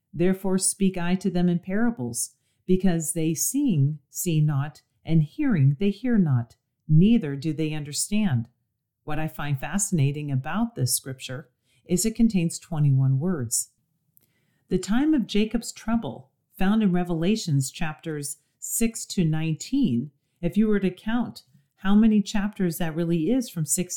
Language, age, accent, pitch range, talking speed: English, 40-59, American, 135-195 Hz, 145 wpm